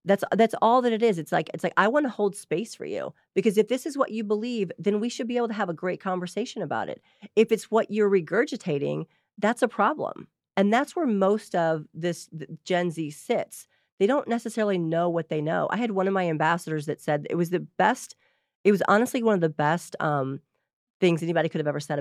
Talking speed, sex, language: 235 wpm, female, English